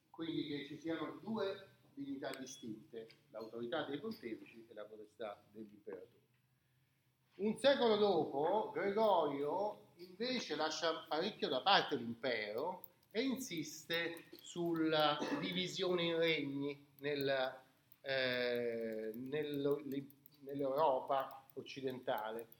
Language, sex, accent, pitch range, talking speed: Italian, male, native, 130-175 Hz, 95 wpm